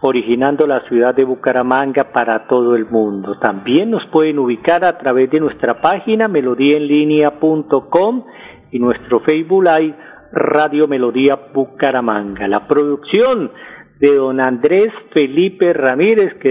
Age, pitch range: 40-59, 130-160 Hz